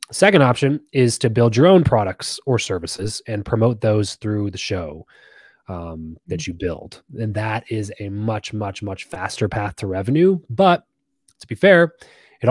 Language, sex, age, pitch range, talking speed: English, male, 20-39, 95-115 Hz, 175 wpm